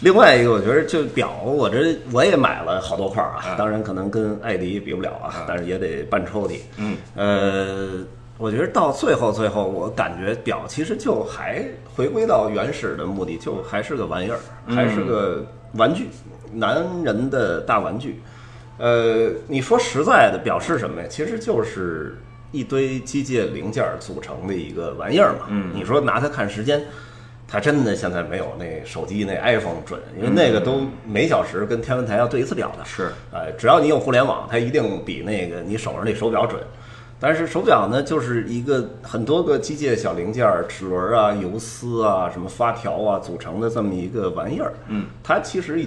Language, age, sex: Chinese, 30-49, male